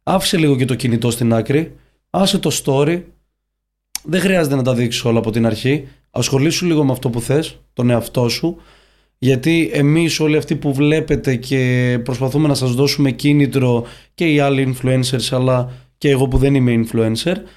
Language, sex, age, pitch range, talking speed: Greek, male, 20-39, 120-150 Hz, 175 wpm